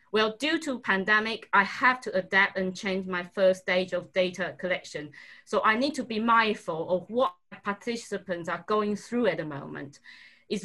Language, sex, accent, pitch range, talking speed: English, female, British, 185-225 Hz, 180 wpm